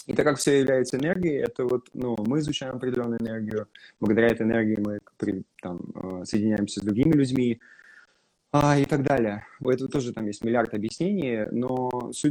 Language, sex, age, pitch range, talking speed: Russian, male, 20-39, 100-125 Hz, 165 wpm